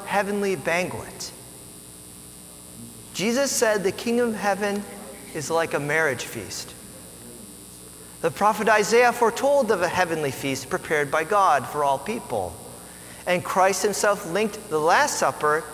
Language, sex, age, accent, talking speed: English, male, 40-59, American, 130 wpm